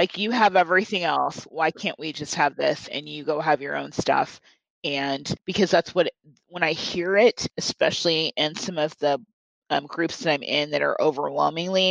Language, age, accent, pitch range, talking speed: English, 30-49, American, 165-200 Hz, 200 wpm